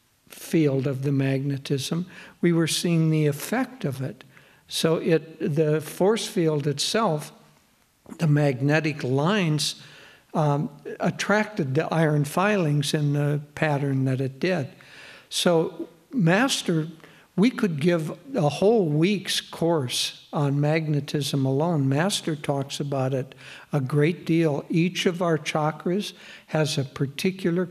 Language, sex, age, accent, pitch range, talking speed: English, male, 60-79, American, 145-175 Hz, 125 wpm